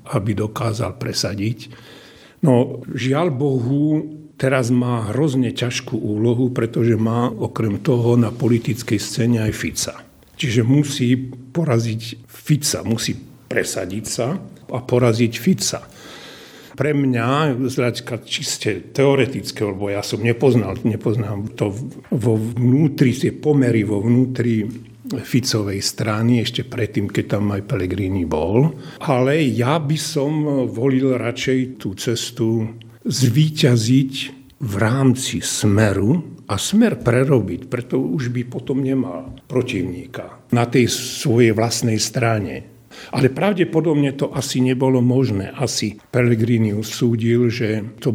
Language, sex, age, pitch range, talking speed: Slovak, male, 50-69, 115-135 Hz, 115 wpm